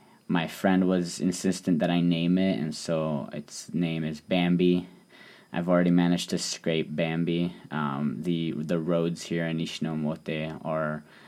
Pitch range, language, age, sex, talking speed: 75-85 Hz, English, 20-39, male, 150 wpm